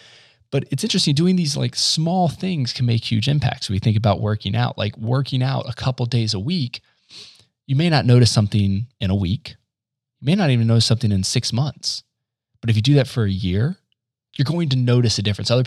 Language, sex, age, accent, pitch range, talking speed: English, male, 20-39, American, 105-130 Hz, 220 wpm